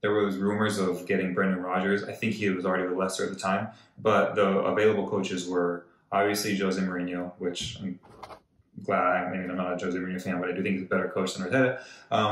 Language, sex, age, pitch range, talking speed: English, male, 20-39, 95-105 Hz, 230 wpm